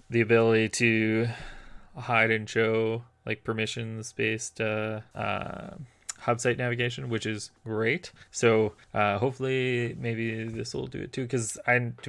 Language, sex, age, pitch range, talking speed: English, male, 20-39, 115-140 Hz, 145 wpm